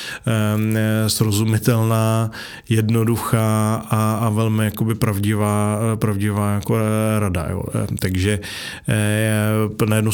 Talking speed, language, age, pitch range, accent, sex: 85 wpm, Czech, 20-39, 100-110 Hz, native, male